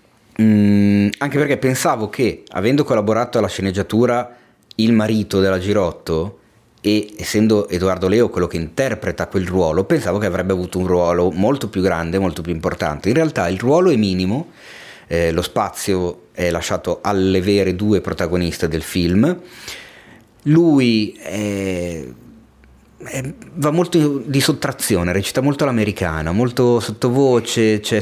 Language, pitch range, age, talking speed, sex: Italian, 90-115 Hz, 30-49, 135 wpm, male